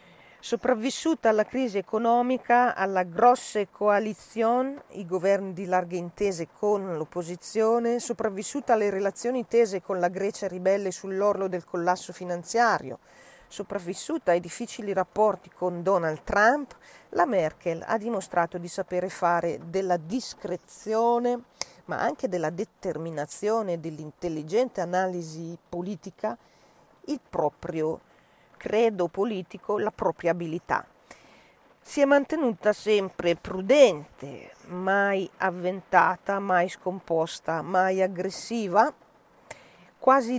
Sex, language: female, Italian